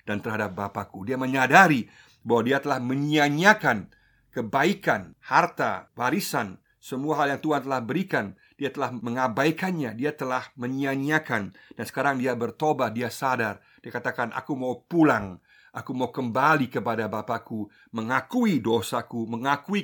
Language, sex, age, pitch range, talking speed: Indonesian, male, 50-69, 115-140 Hz, 130 wpm